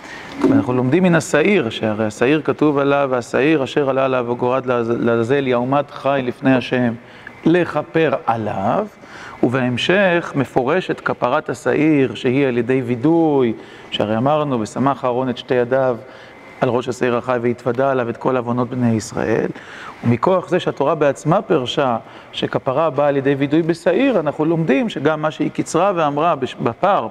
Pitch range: 130-170 Hz